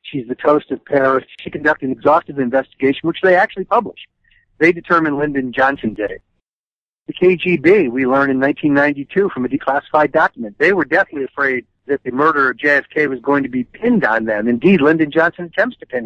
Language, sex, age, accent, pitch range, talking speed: English, male, 60-79, American, 140-235 Hz, 195 wpm